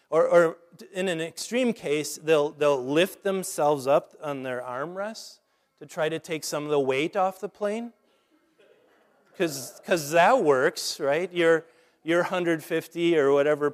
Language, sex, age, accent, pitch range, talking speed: English, male, 30-49, American, 125-160 Hz, 155 wpm